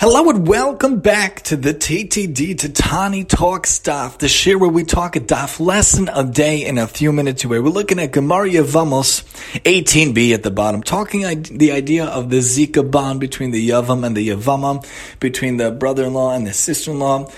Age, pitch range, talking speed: 30-49, 130-165 Hz, 185 wpm